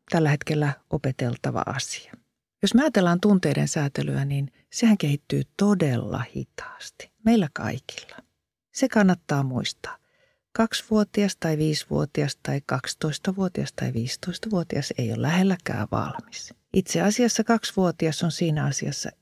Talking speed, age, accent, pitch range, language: 115 wpm, 50-69, native, 160-230 Hz, Finnish